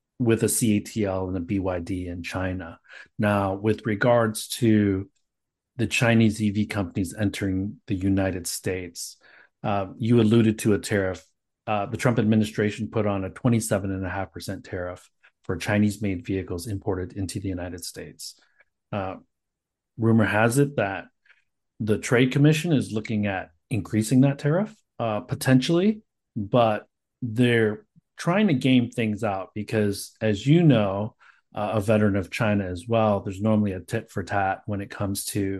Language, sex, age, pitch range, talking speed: English, male, 40-59, 100-120 Hz, 145 wpm